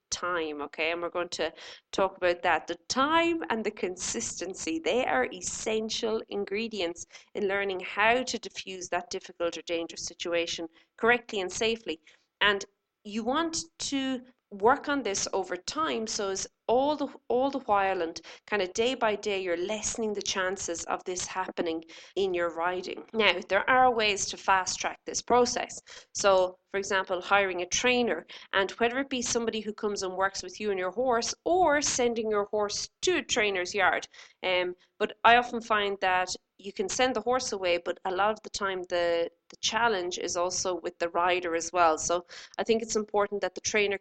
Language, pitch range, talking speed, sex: English, 180-230 Hz, 185 wpm, female